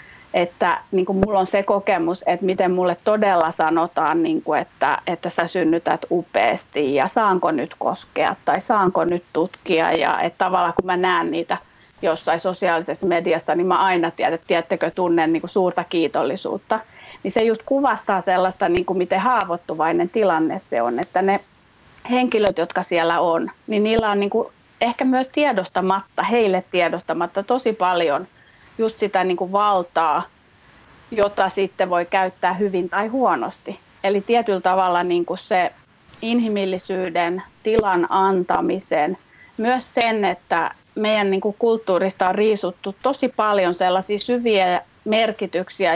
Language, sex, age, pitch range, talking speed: Finnish, female, 30-49, 180-220 Hz, 135 wpm